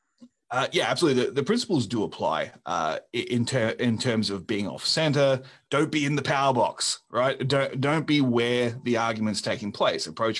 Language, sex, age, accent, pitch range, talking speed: English, male, 30-49, Australian, 120-150 Hz, 190 wpm